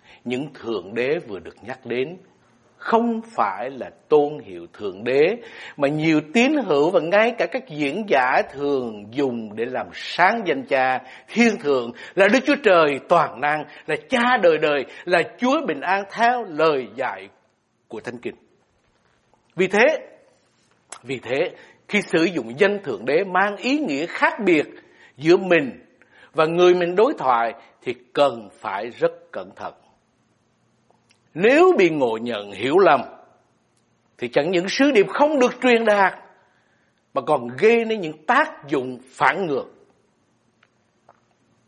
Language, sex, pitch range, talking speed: Vietnamese, male, 135-220 Hz, 150 wpm